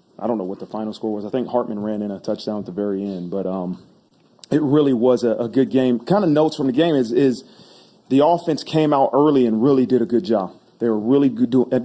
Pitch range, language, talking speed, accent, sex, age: 110-125 Hz, English, 260 wpm, American, male, 30-49